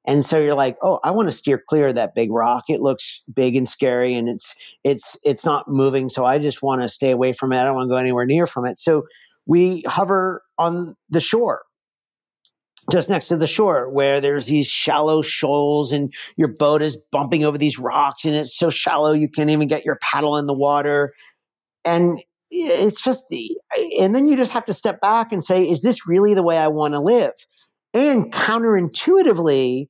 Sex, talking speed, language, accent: male, 210 wpm, English, American